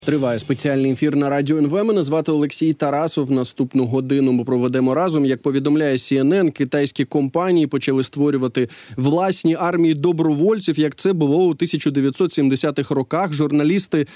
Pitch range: 140-175 Hz